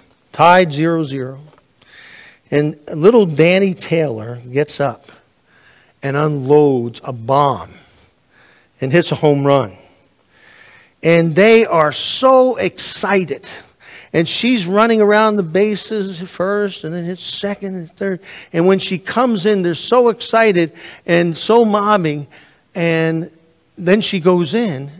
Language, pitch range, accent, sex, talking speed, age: English, 140-185 Hz, American, male, 125 wpm, 50-69